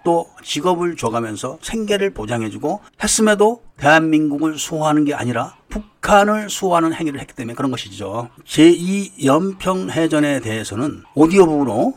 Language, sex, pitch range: Korean, male, 130-180 Hz